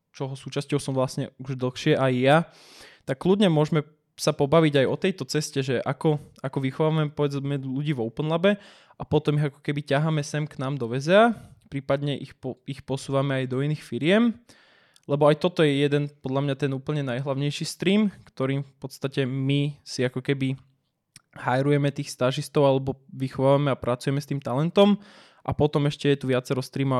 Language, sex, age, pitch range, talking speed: Slovak, male, 20-39, 125-145 Hz, 180 wpm